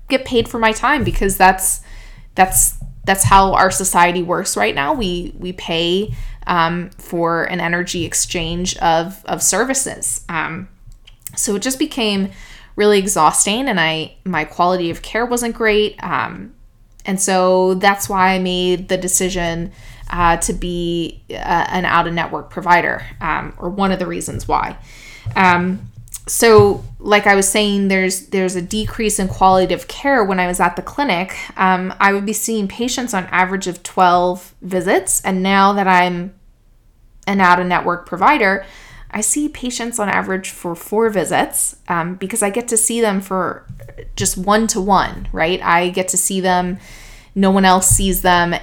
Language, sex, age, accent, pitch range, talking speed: English, female, 20-39, American, 170-200 Hz, 165 wpm